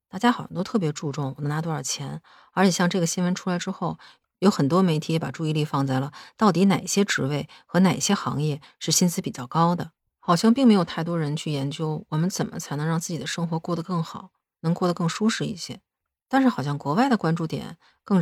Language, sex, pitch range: Chinese, female, 150-195 Hz